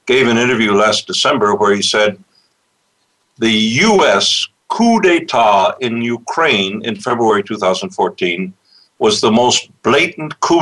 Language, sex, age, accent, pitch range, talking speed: English, male, 60-79, American, 110-150 Hz, 125 wpm